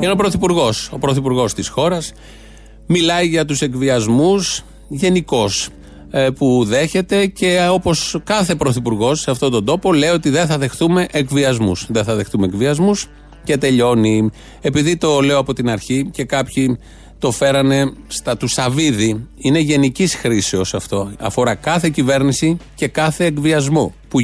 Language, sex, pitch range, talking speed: Greek, male, 130-175 Hz, 145 wpm